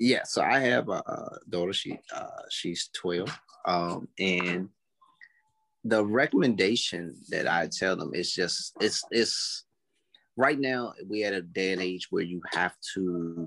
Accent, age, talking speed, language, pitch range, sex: American, 30-49, 150 wpm, English, 90-110 Hz, male